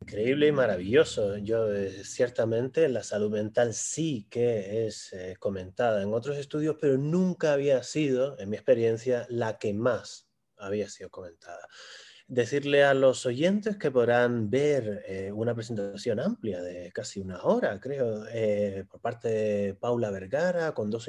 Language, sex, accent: Spanish, male, Argentinian